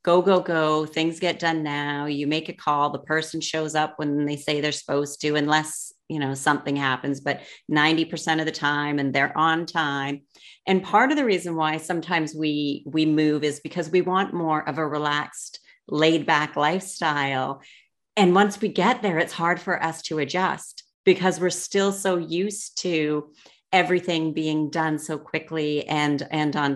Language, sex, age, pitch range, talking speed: English, female, 40-59, 150-180 Hz, 180 wpm